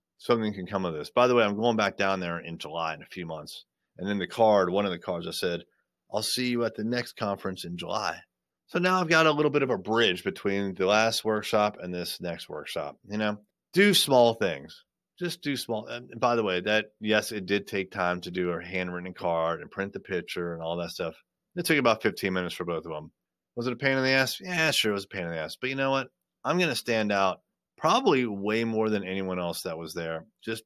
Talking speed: 255 wpm